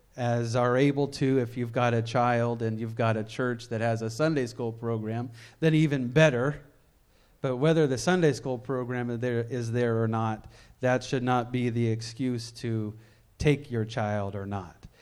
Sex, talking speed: male, 180 wpm